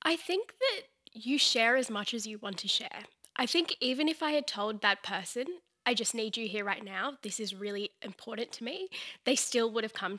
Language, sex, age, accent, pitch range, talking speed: English, female, 10-29, Australian, 210-265 Hz, 230 wpm